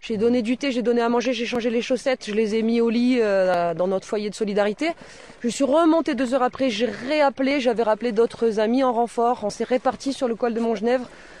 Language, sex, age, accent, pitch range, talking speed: French, female, 20-39, French, 225-270 Hz, 240 wpm